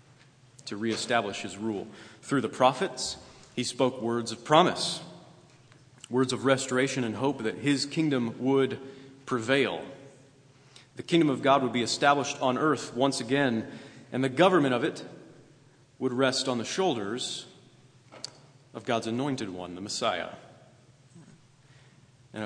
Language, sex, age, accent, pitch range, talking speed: English, male, 40-59, American, 110-135 Hz, 135 wpm